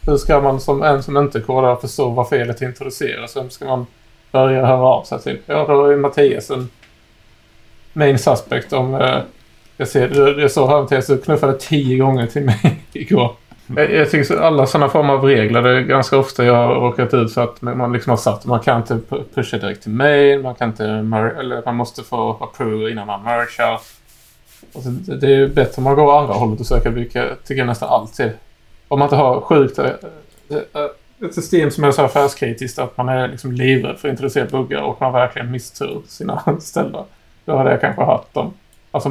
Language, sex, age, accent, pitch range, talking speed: Swedish, male, 20-39, Norwegian, 120-140 Hz, 205 wpm